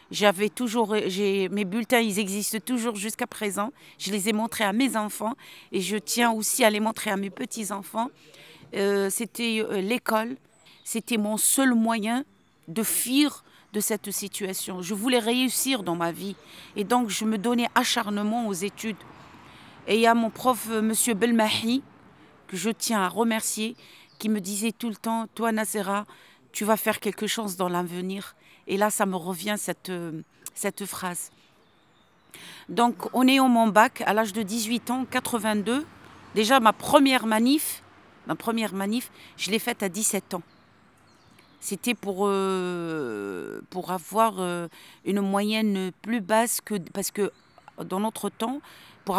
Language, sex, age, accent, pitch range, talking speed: French, female, 50-69, French, 200-230 Hz, 160 wpm